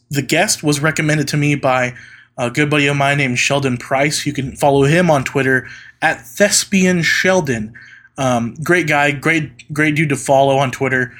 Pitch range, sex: 125-155 Hz, male